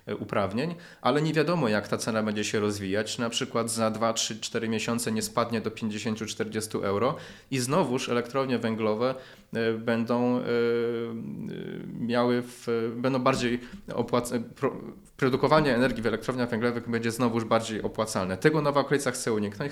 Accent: native